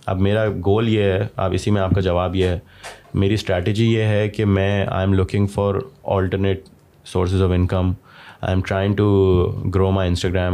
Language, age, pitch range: Urdu, 20-39, 95-110 Hz